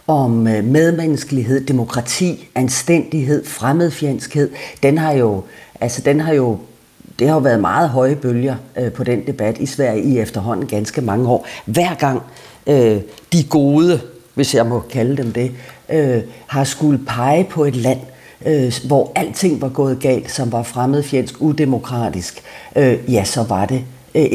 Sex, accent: female, native